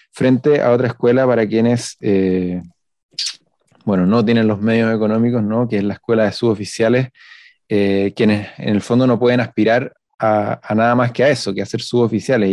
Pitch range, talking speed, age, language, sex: 105-120 Hz, 185 wpm, 30-49, Spanish, male